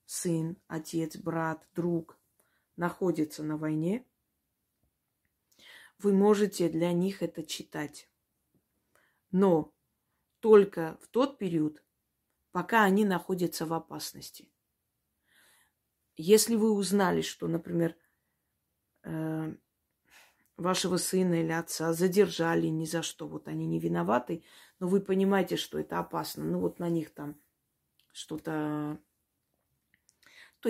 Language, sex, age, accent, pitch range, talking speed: Russian, female, 20-39, native, 150-190 Hz, 105 wpm